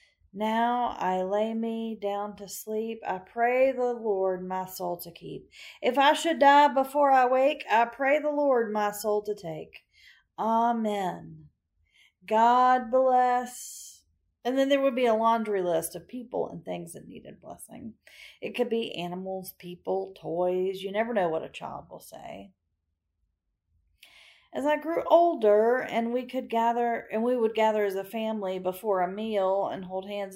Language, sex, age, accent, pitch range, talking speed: English, female, 40-59, American, 175-240 Hz, 165 wpm